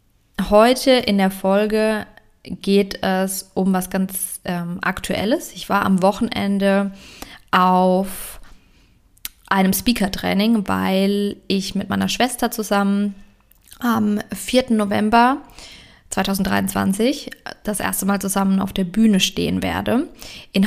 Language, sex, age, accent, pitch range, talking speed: German, female, 20-39, German, 190-215 Hz, 110 wpm